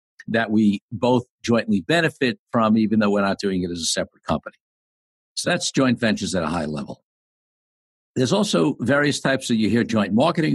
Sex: male